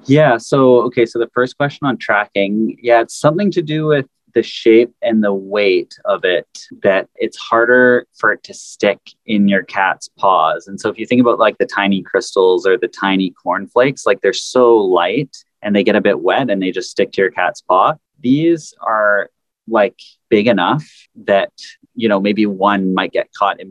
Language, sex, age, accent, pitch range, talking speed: English, male, 30-49, American, 95-135 Hz, 200 wpm